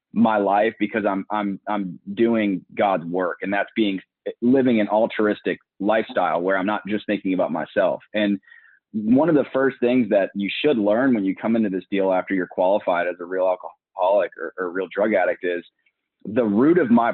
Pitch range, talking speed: 100-120 Hz, 195 wpm